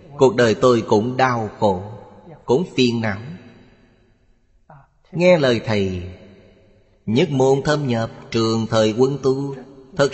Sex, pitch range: male, 105-130 Hz